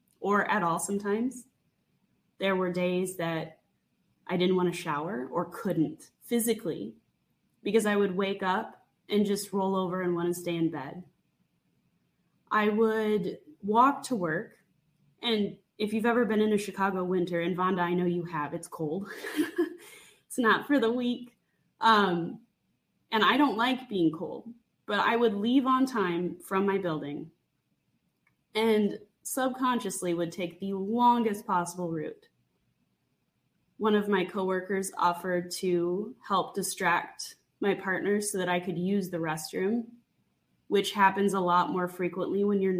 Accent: American